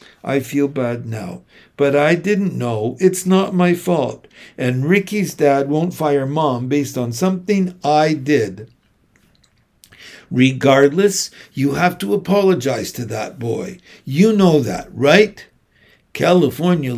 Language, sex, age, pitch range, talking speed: English, male, 60-79, 135-190 Hz, 125 wpm